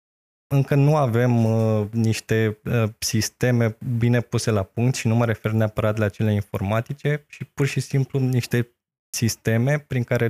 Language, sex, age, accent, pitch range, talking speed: Romanian, male, 20-39, native, 105-120 Hz, 145 wpm